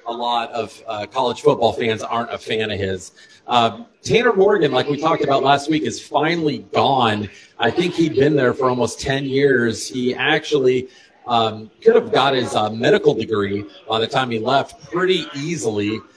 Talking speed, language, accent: 185 wpm, English, American